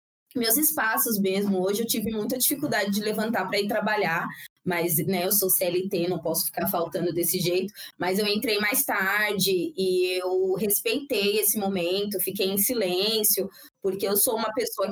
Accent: Brazilian